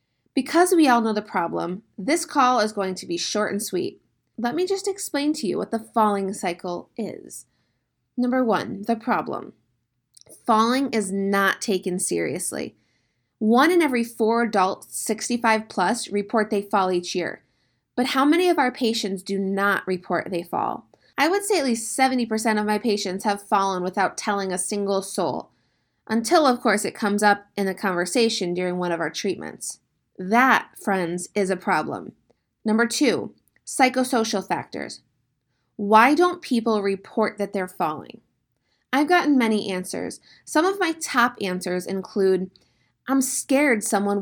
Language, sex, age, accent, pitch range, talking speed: English, female, 20-39, American, 190-255 Hz, 160 wpm